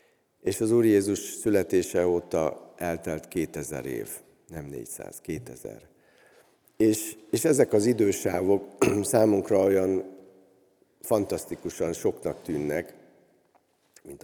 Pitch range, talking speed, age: 75-100 Hz, 95 wpm, 50-69